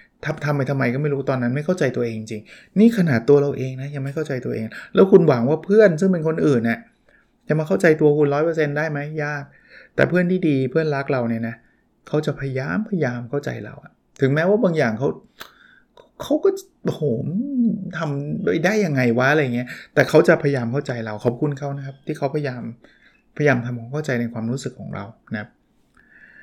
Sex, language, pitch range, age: male, Thai, 125-155 Hz, 20-39